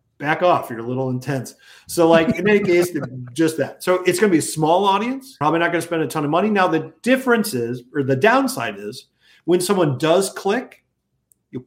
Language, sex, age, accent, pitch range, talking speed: English, male, 40-59, American, 145-190 Hz, 220 wpm